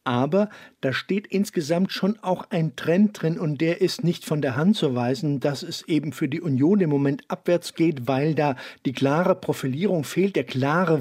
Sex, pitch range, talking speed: male, 110-160 Hz, 195 wpm